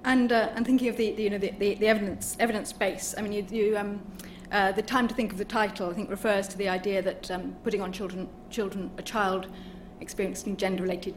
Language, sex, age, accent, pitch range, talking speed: English, female, 40-59, British, 185-215 Hz, 210 wpm